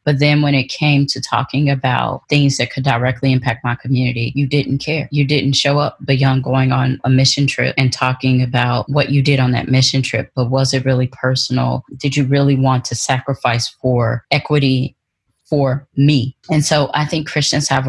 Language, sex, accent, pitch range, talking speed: English, female, American, 125-140 Hz, 200 wpm